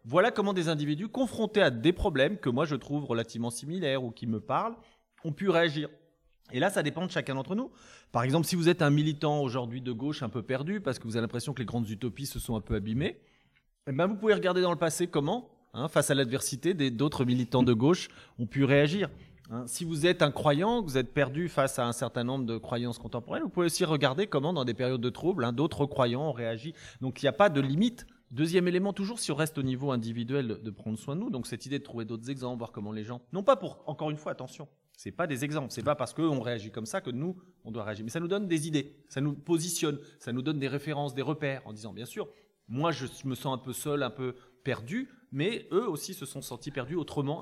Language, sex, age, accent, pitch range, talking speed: French, male, 20-39, French, 125-165 Hz, 255 wpm